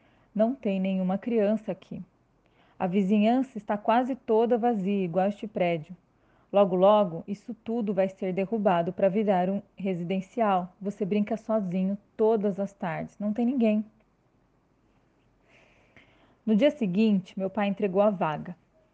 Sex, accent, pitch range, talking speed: female, Brazilian, 185-220 Hz, 135 wpm